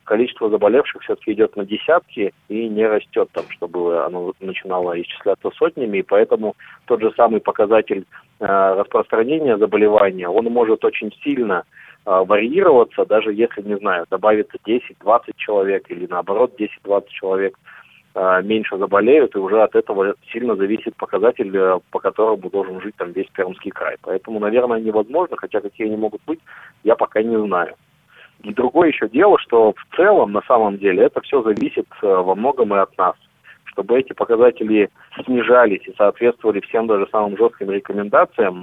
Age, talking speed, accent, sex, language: 30-49, 155 wpm, native, male, Russian